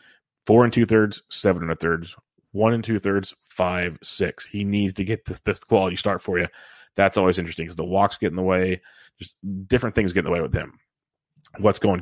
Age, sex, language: 30-49, male, English